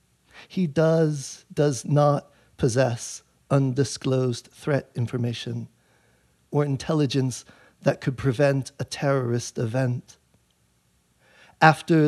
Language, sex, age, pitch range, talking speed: English, male, 50-69, 115-150 Hz, 85 wpm